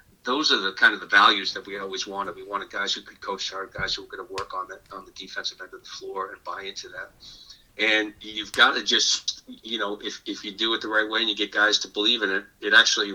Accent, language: American, English